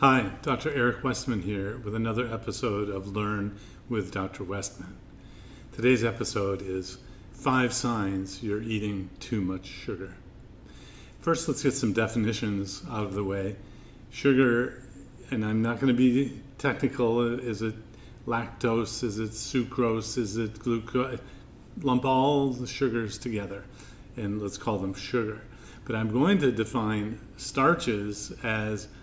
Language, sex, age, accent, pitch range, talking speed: English, male, 40-59, American, 105-125 Hz, 135 wpm